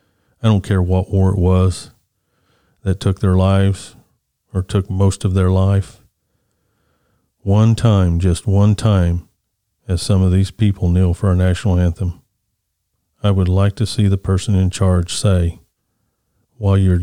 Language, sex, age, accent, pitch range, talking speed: English, male, 40-59, American, 90-105 Hz, 155 wpm